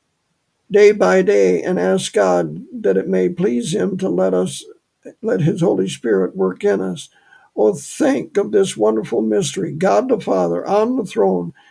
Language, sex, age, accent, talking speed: English, male, 60-79, American, 170 wpm